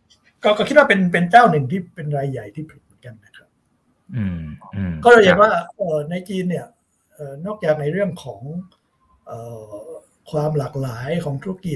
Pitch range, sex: 135-165 Hz, male